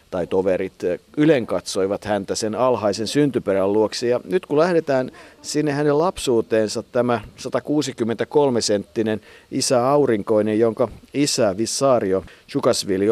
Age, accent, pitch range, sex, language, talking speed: 50-69, native, 105-130 Hz, male, Finnish, 100 wpm